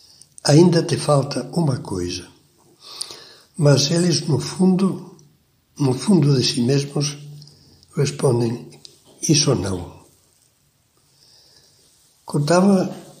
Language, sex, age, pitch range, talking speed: Portuguese, male, 60-79, 125-155 Hz, 80 wpm